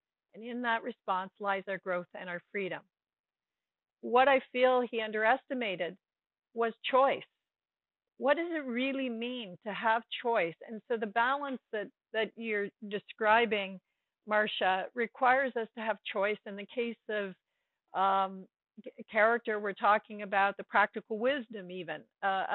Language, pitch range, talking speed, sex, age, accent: English, 200-240 Hz, 140 wpm, female, 50-69, American